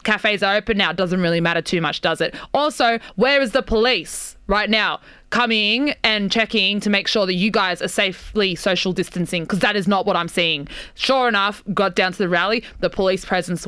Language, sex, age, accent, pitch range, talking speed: English, female, 20-39, Australian, 180-210 Hz, 215 wpm